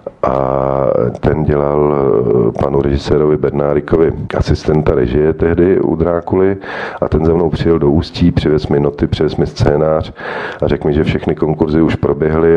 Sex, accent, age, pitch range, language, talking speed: male, native, 40-59, 70-80 Hz, Czech, 155 wpm